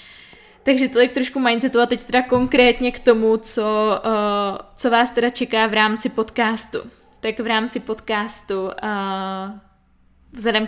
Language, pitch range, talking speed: Czech, 210-230 Hz, 135 wpm